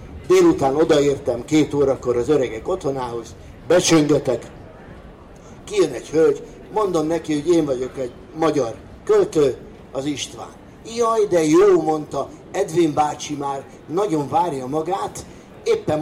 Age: 60-79